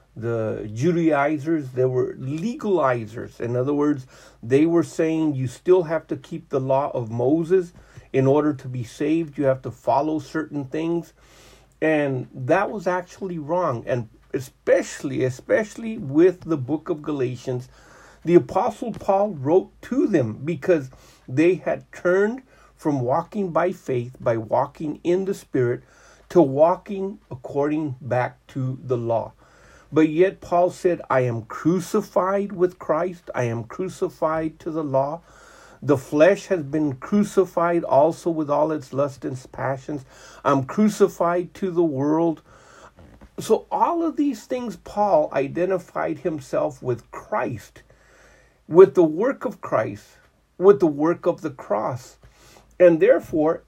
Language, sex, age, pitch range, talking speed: English, male, 50-69, 130-180 Hz, 140 wpm